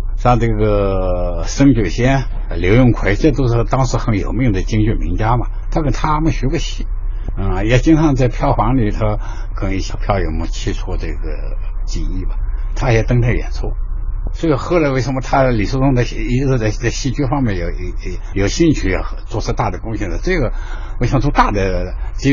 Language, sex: Chinese, male